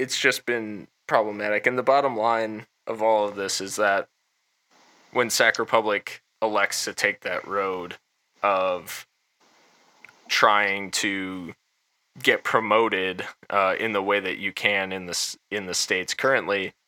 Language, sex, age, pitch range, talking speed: English, male, 20-39, 95-110 Hz, 140 wpm